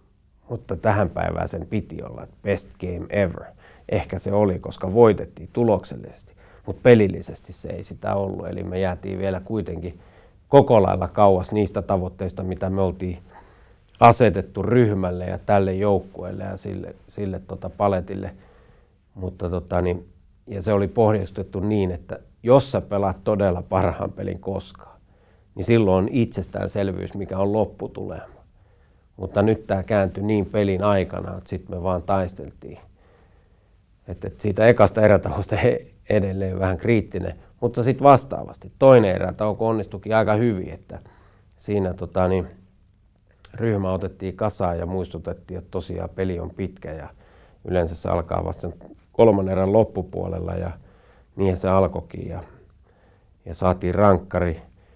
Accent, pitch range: native, 90-100 Hz